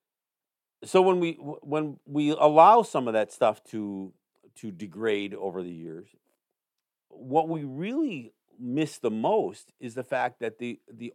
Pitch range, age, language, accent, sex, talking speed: 110-150 Hz, 50-69, English, American, male, 150 wpm